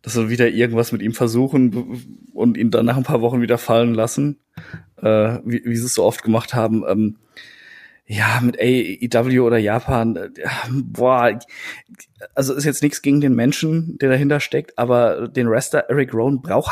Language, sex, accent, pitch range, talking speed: German, male, German, 115-130 Hz, 180 wpm